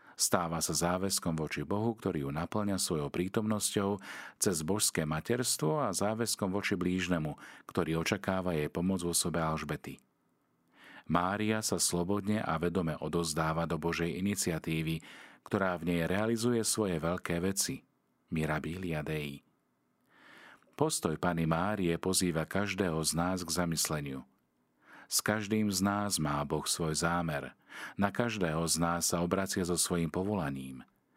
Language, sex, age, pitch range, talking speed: Slovak, male, 40-59, 80-100 Hz, 130 wpm